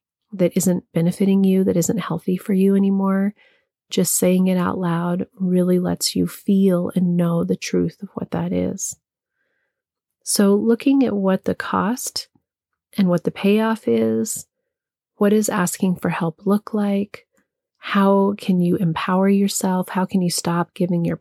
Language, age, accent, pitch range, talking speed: English, 30-49, American, 175-215 Hz, 160 wpm